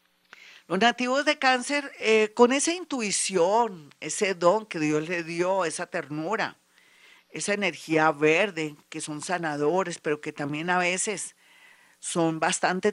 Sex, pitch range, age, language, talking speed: female, 160-210 Hz, 50-69, Spanish, 135 wpm